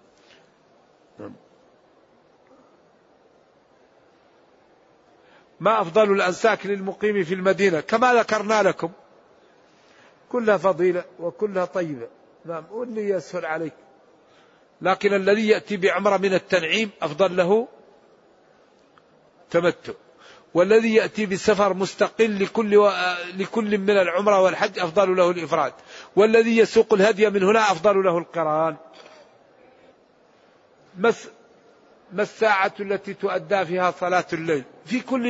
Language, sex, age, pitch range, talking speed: Arabic, male, 50-69, 185-220 Hz, 95 wpm